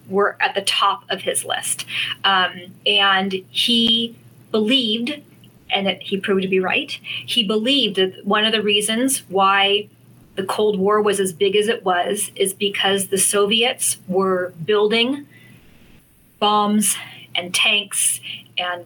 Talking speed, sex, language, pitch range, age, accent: 140 wpm, female, English, 190-225 Hz, 30-49, American